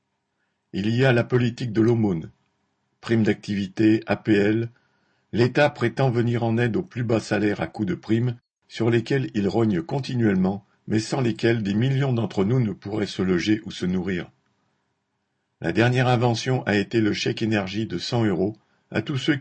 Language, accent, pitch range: French, French, 100-120 Hz